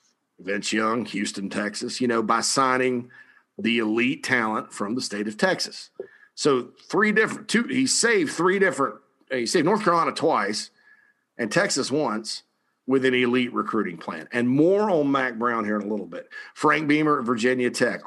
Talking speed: 175 wpm